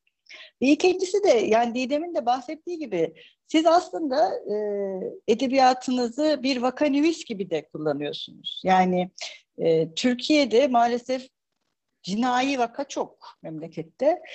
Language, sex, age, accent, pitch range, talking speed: Turkish, female, 60-79, native, 210-270 Hz, 100 wpm